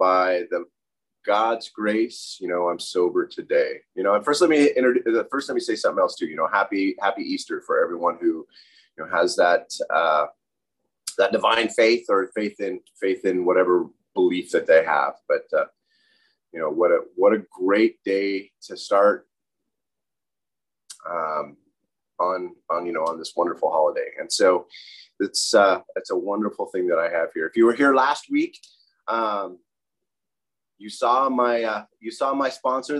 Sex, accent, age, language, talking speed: male, American, 30-49, English, 180 wpm